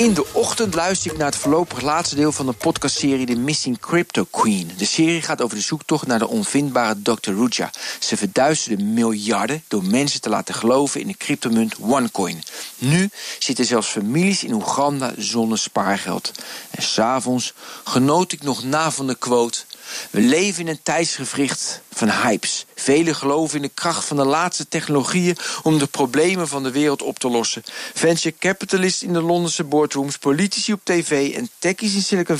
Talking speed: 175 wpm